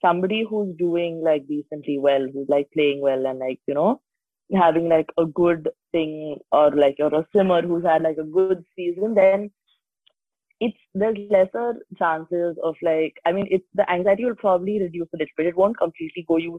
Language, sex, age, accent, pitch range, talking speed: English, female, 20-39, Indian, 155-185 Hz, 190 wpm